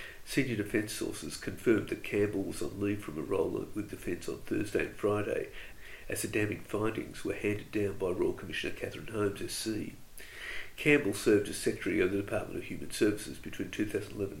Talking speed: 180 wpm